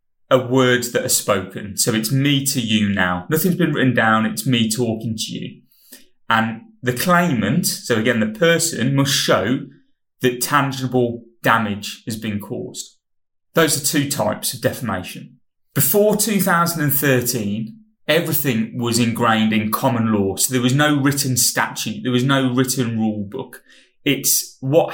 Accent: British